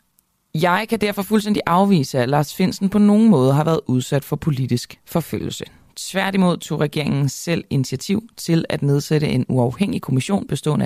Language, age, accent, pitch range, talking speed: Danish, 30-49, native, 130-200 Hz, 160 wpm